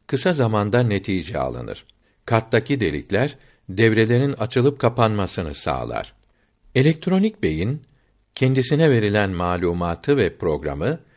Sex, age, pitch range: male, 60-79, 105-140 Hz